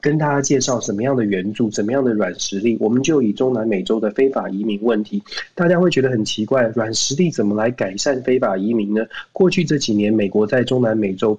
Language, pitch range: Chinese, 110-145 Hz